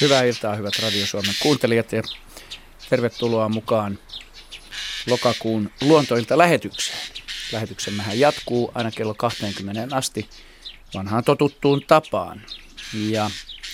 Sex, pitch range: male, 105-125 Hz